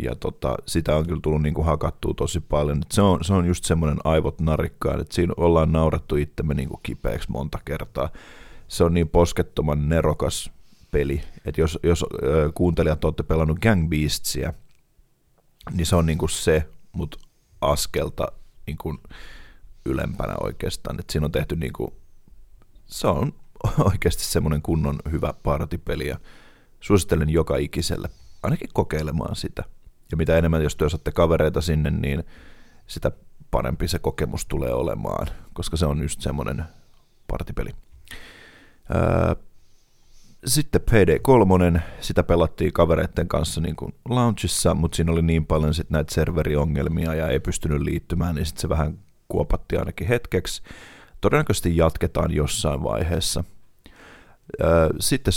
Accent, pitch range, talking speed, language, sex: native, 75-85 Hz, 135 wpm, Finnish, male